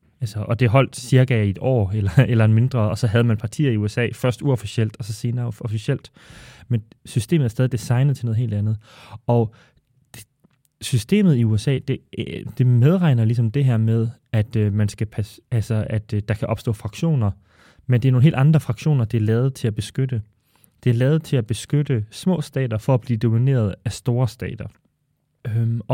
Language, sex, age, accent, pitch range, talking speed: Danish, male, 20-39, native, 110-135 Hz, 200 wpm